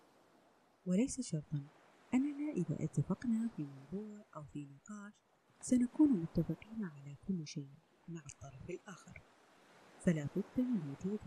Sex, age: female, 30-49